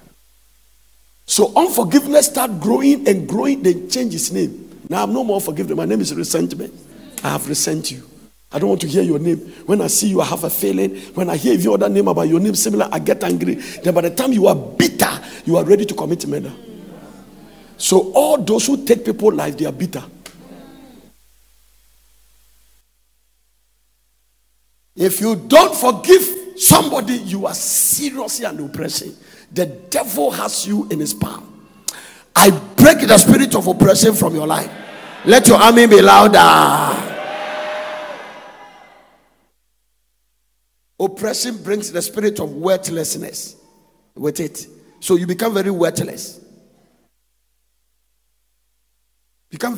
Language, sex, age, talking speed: English, male, 50-69, 145 wpm